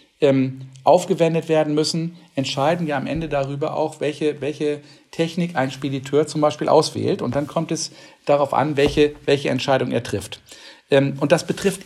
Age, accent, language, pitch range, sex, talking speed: 50-69, German, German, 135-180 Hz, male, 155 wpm